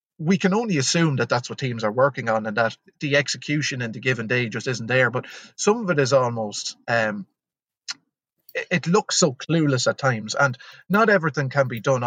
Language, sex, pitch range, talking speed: English, male, 120-140 Hz, 205 wpm